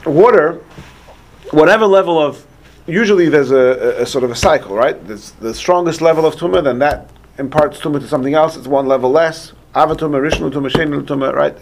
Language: English